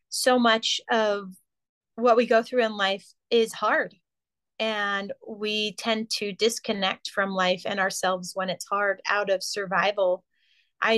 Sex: female